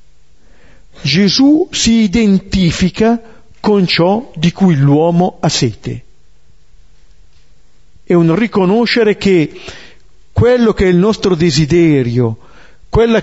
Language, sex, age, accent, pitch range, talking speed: Italian, male, 50-69, native, 125-195 Hz, 95 wpm